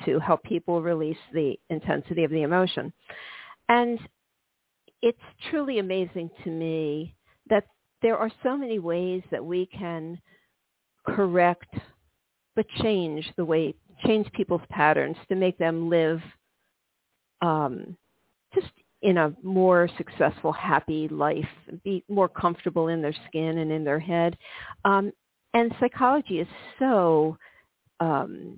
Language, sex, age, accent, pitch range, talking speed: English, female, 50-69, American, 165-205 Hz, 125 wpm